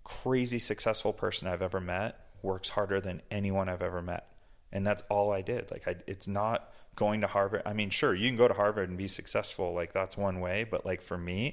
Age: 30-49